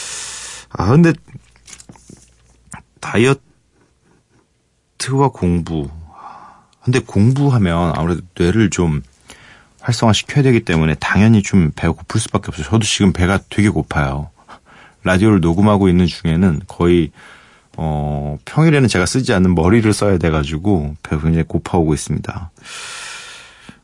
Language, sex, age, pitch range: Korean, male, 40-59, 85-130 Hz